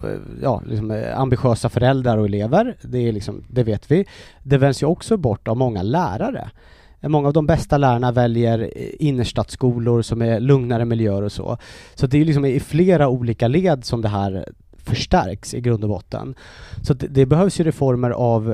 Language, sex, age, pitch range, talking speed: Swedish, male, 30-49, 115-135 Hz, 180 wpm